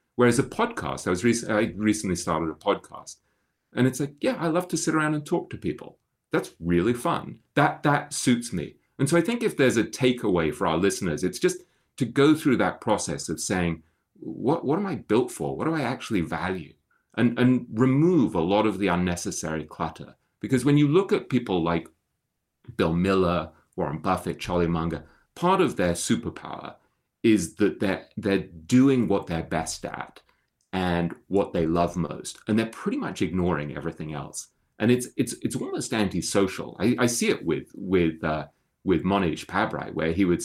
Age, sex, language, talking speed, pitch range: 30-49, male, English, 190 wpm, 85-130 Hz